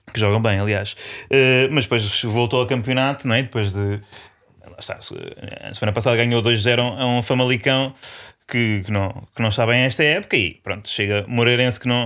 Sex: male